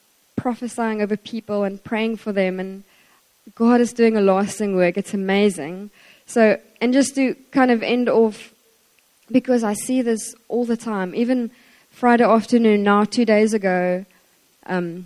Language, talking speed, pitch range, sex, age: English, 155 wpm, 195-230 Hz, female, 20-39